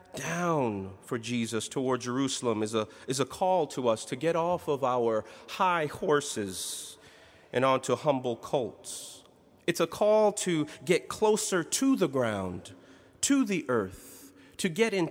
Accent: American